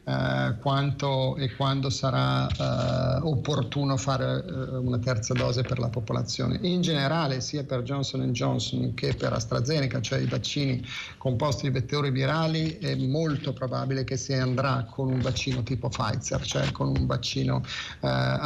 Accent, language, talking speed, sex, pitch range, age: native, Italian, 155 wpm, male, 125-150 Hz, 40-59